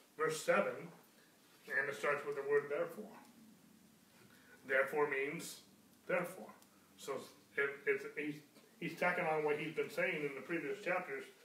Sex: male